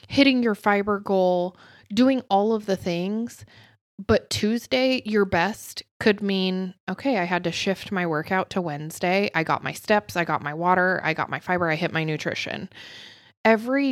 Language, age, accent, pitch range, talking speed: English, 20-39, American, 170-215 Hz, 175 wpm